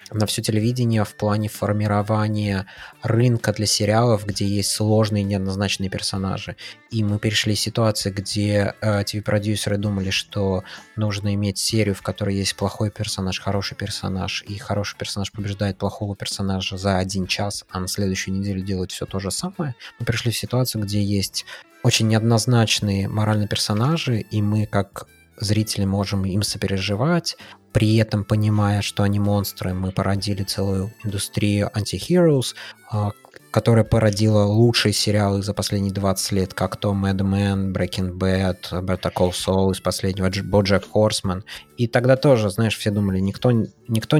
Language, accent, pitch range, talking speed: Russian, native, 100-110 Hz, 150 wpm